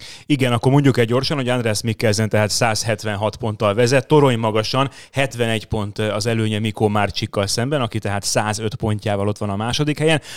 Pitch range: 110-135 Hz